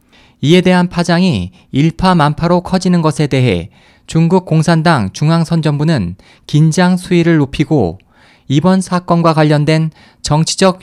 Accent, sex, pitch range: native, male, 135-180 Hz